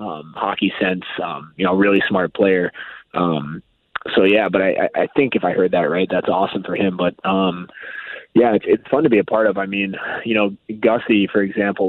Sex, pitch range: male, 95-105 Hz